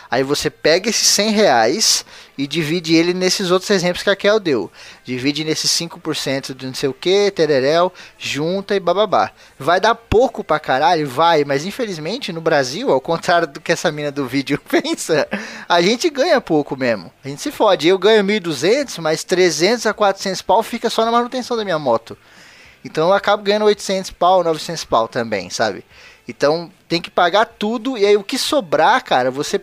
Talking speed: 190 wpm